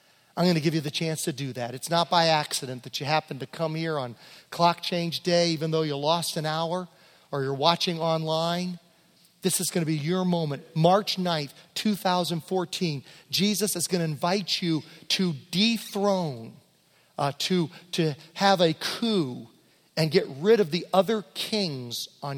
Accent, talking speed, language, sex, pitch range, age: American, 175 wpm, English, male, 145-185 Hz, 40-59